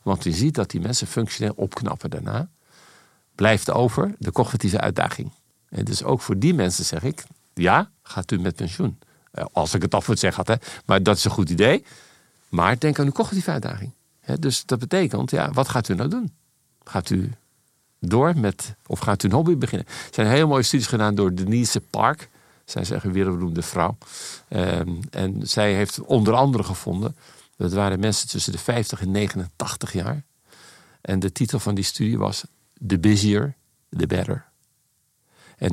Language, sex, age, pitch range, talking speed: Dutch, male, 50-69, 100-125 Hz, 175 wpm